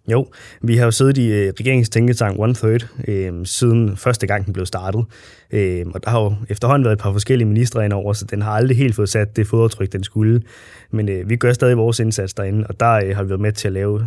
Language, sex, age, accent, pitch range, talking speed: Danish, male, 20-39, native, 100-115 Hz, 245 wpm